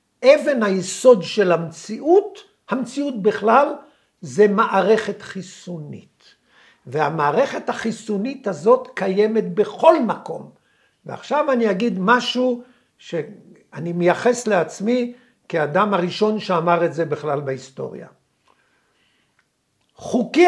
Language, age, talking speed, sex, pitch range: Hebrew, 60-79, 90 wpm, male, 195-260 Hz